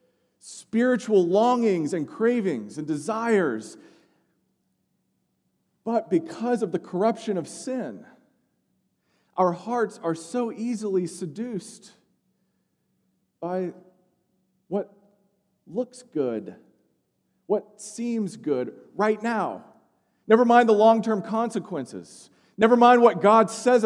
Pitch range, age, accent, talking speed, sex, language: 160-220 Hz, 40-59, American, 95 wpm, male, English